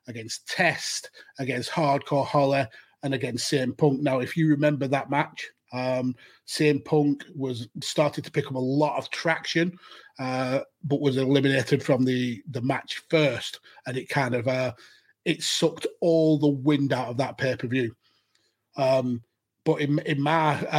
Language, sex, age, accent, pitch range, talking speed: English, male, 30-49, British, 135-155 Hz, 160 wpm